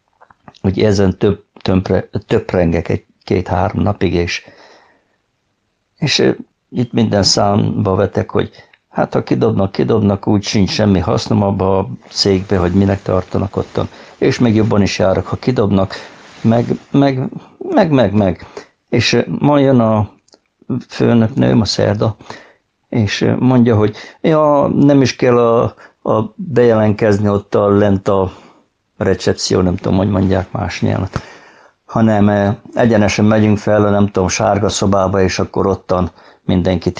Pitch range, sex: 95-115 Hz, male